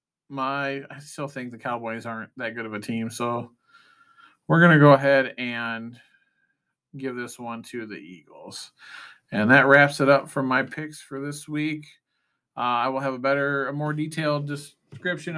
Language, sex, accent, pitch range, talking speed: English, male, American, 125-150 Hz, 180 wpm